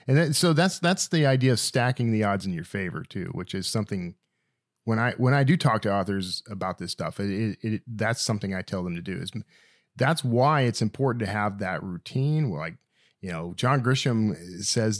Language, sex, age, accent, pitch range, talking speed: English, male, 40-59, American, 100-135 Hz, 210 wpm